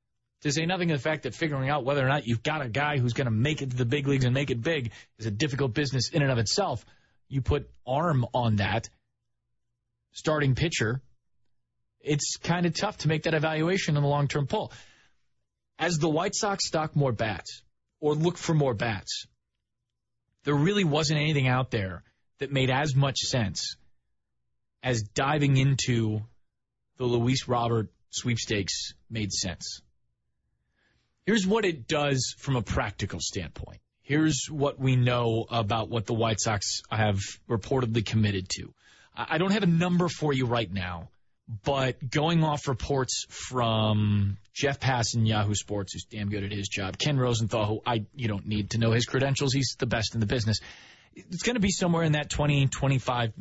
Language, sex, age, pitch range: English, male, 30-49, 110-150 Hz